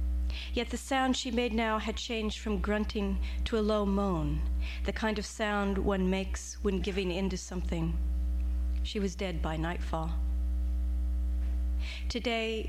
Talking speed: 145 wpm